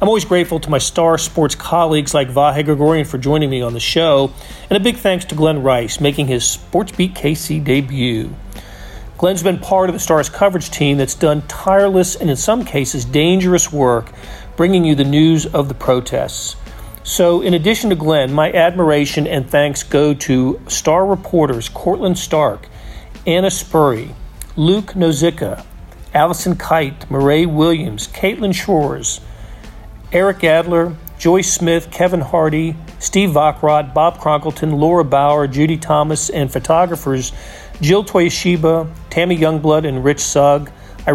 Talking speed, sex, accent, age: 150 wpm, male, American, 40-59